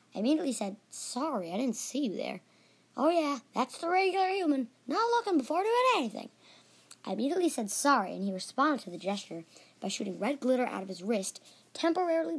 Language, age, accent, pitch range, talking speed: English, 20-39, American, 195-300 Hz, 190 wpm